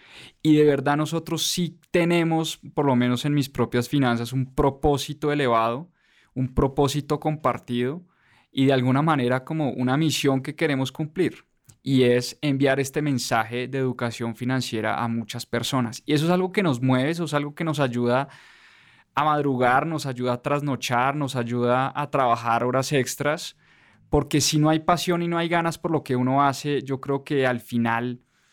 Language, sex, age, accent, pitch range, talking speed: English, male, 20-39, Colombian, 125-150 Hz, 175 wpm